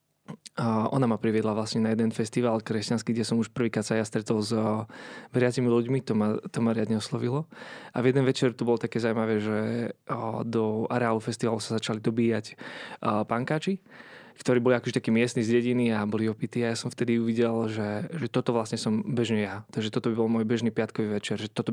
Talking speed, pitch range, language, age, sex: 195 wpm, 110-125 Hz, Slovak, 20-39, male